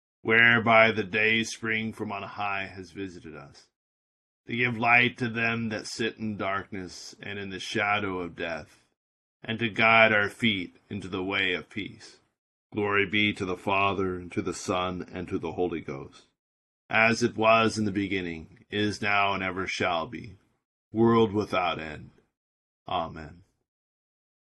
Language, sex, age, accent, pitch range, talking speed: English, male, 40-59, American, 95-115 Hz, 160 wpm